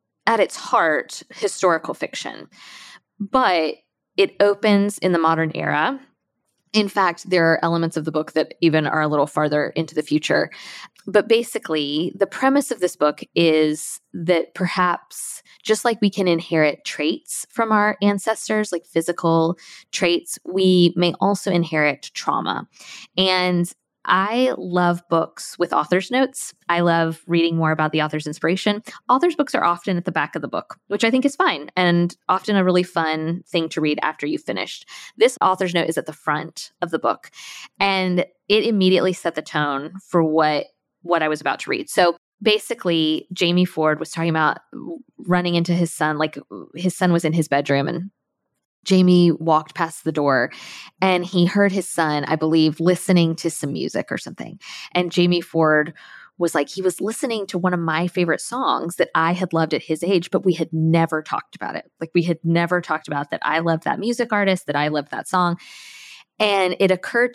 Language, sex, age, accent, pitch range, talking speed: English, female, 20-39, American, 160-200 Hz, 185 wpm